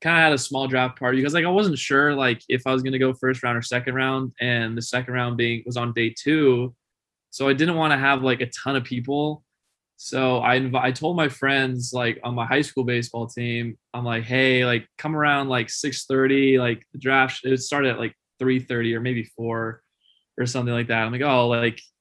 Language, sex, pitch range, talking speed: English, male, 120-135 Hz, 240 wpm